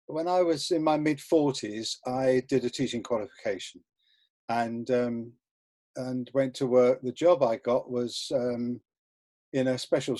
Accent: British